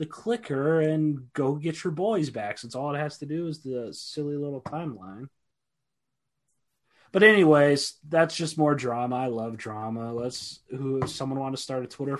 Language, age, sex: English, 20-39, male